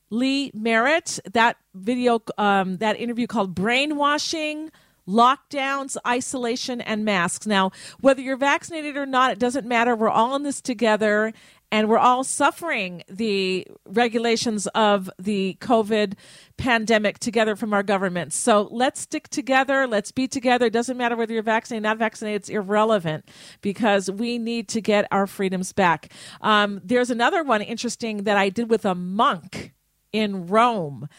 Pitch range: 205-245 Hz